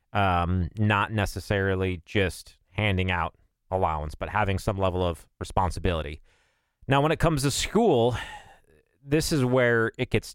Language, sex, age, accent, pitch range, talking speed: English, male, 30-49, American, 90-115 Hz, 140 wpm